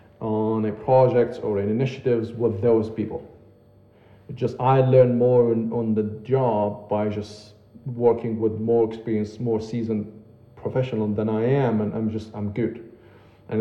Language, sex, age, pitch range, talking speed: English, male, 40-59, 110-130 Hz, 165 wpm